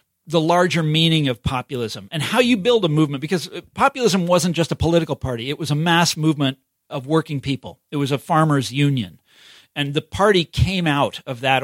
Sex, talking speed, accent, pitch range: male, 195 wpm, American, 140-185 Hz